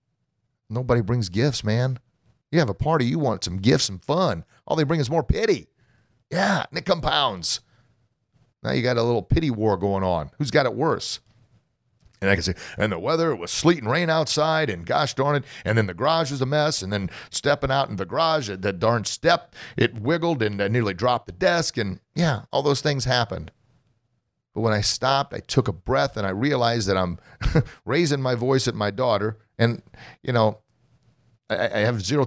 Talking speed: 205 wpm